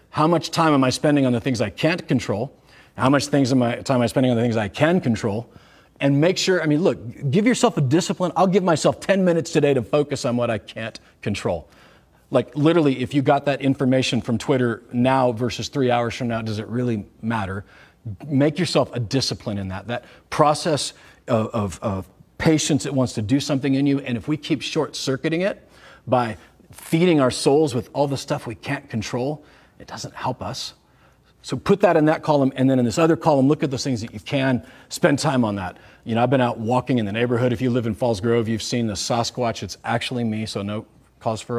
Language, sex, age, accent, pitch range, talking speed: English, male, 40-59, American, 120-150 Hz, 225 wpm